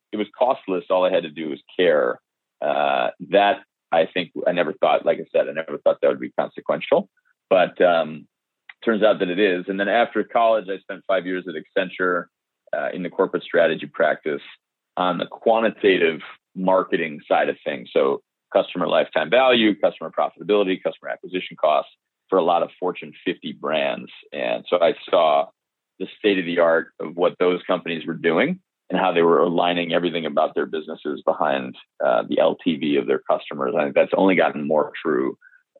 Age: 30-49